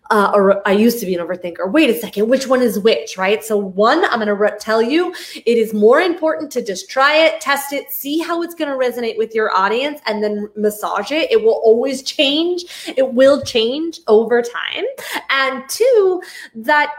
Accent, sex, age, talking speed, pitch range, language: American, female, 20-39, 205 wpm, 215-290 Hz, English